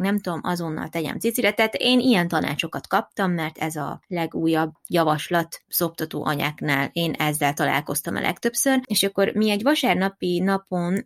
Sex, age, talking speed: female, 20-39, 145 wpm